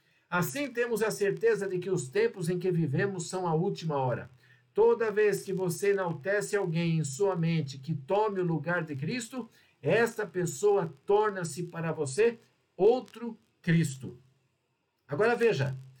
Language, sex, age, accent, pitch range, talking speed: Portuguese, male, 60-79, Brazilian, 155-215 Hz, 145 wpm